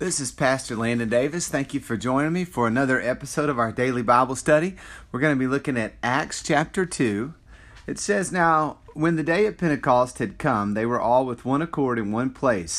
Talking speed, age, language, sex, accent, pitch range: 215 wpm, 40-59, English, male, American, 120-155 Hz